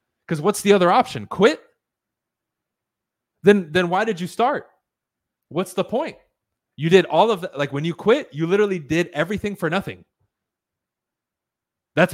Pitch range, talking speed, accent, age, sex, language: 140-190 Hz, 155 wpm, American, 20-39, male, English